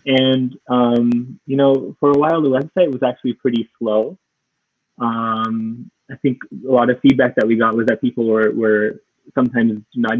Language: English